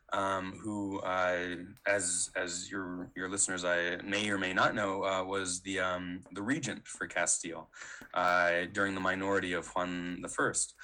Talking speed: 160 wpm